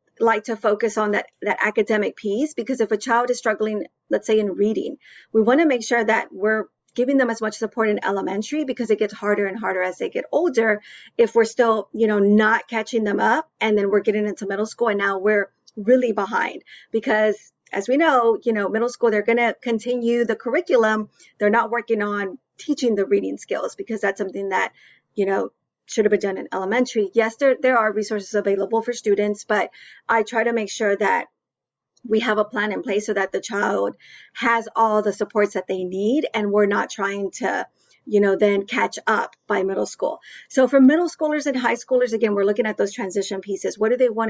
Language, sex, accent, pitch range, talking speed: English, female, American, 205-235 Hz, 215 wpm